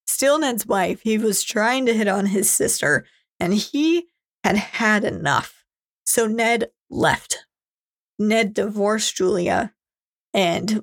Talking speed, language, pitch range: 125 wpm, English, 205-260 Hz